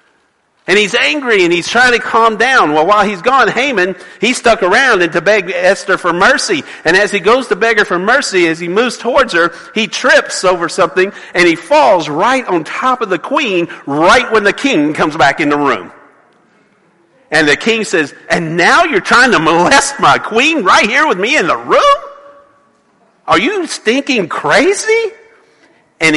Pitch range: 170-255 Hz